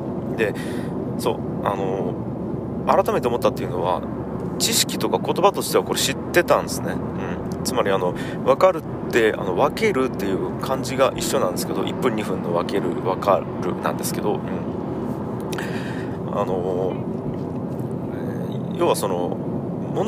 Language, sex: Japanese, male